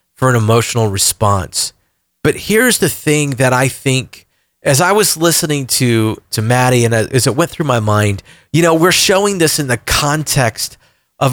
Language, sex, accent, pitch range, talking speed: English, male, American, 105-150 Hz, 180 wpm